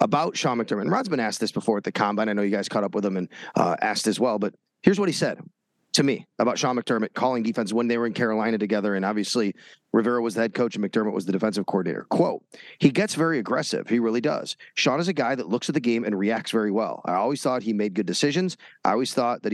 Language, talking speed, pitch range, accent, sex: English, 265 wpm, 115-160 Hz, American, male